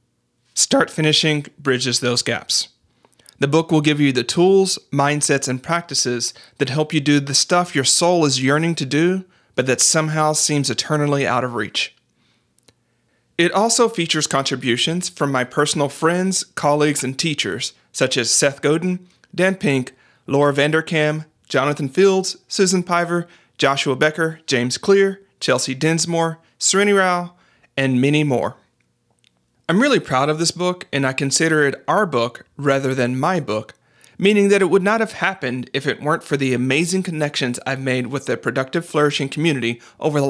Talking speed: 160 wpm